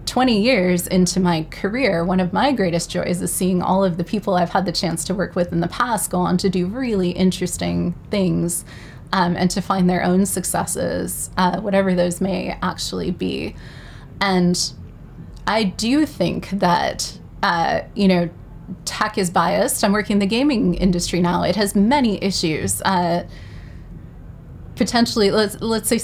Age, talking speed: 20-39, 170 wpm